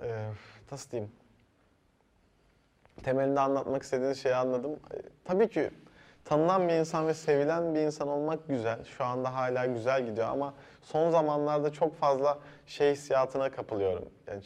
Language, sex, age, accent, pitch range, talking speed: Turkish, male, 30-49, native, 125-155 Hz, 140 wpm